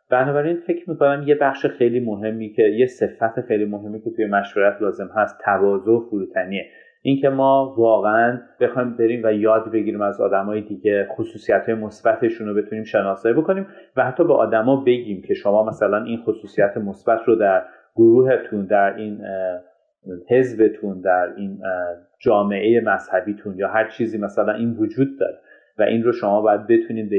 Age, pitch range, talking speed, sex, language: 30-49, 105-135 Hz, 165 wpm, male, Persian